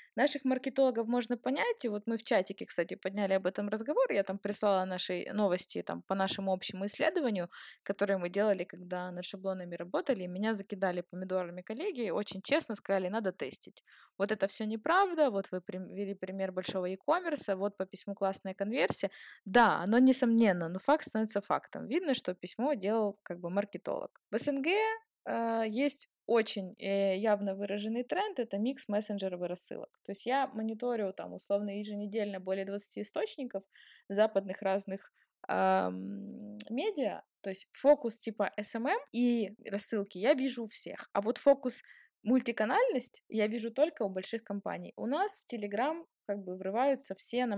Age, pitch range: 20-39, 190-245 Hz